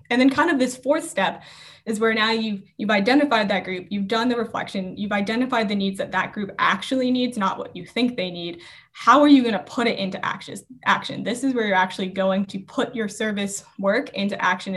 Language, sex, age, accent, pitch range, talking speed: English, female, 10-29, American, 190-225 Hz, 230 wpm